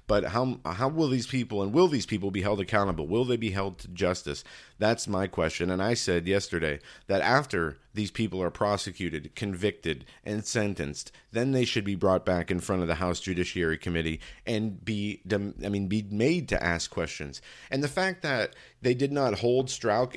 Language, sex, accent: English, male, American